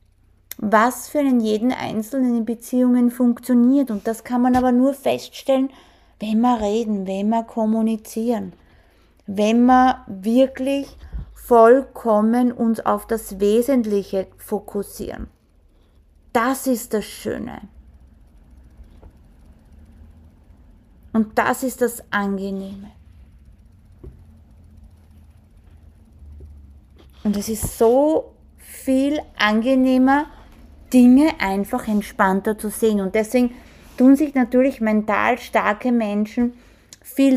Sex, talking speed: female, 95 wpm